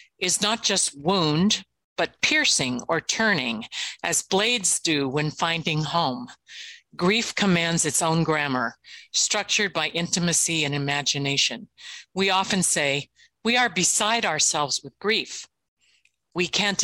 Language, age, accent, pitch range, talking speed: English, 50-69, American, 155-200 Hz, 125 wpm